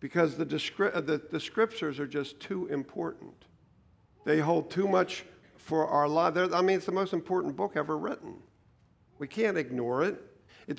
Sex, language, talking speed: male, English, 170 wpm